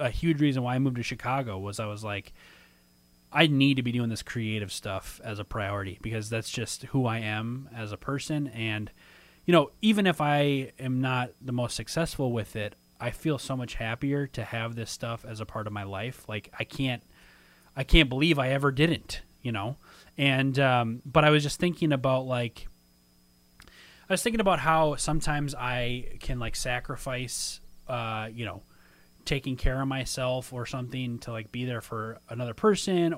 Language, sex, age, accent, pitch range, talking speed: English, male, 20-39, American, 110-145 Hz, 190 wpm